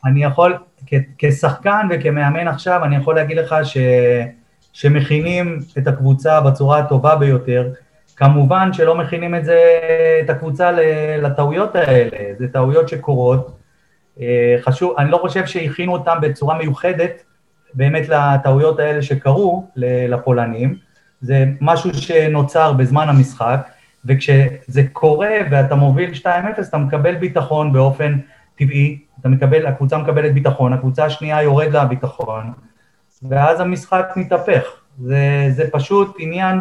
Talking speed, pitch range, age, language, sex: 120 wpm, 130-160 Hz, 30-49, Hebrew, male